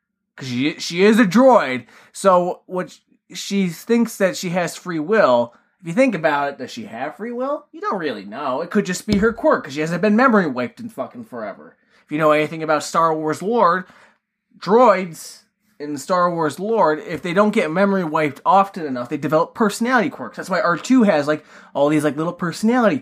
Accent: American